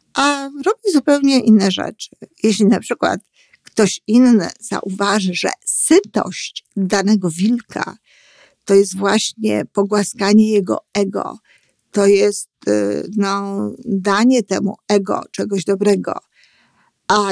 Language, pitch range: Polish, 190-225 Hz